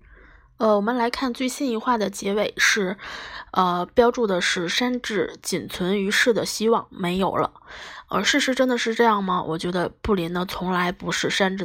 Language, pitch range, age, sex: Chinese, 180-230 Hz, 20-39, female